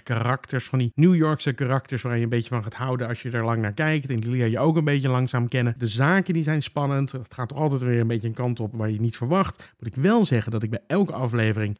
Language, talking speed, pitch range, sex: Dutch, 285 wpm, 115-155 Hz, male